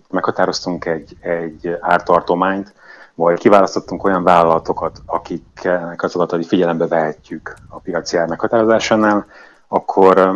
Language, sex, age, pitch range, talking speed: Hungarian, male, 30-49, 85-100 Hz, 105 wpm